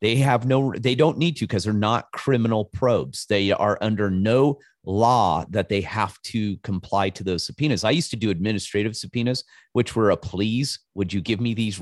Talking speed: 205 wpm